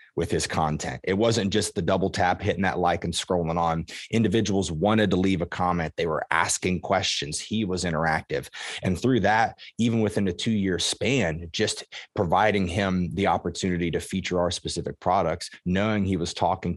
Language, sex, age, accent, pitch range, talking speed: English, male, 30-49, American, 85-100 Hz, 185 wpm